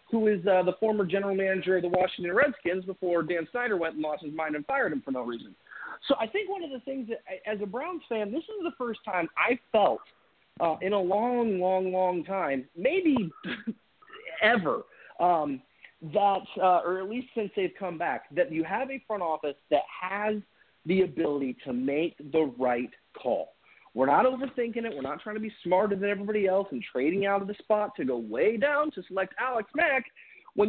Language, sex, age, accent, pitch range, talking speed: English, male, 40-59, American, 180-245 Hz, 205 wpm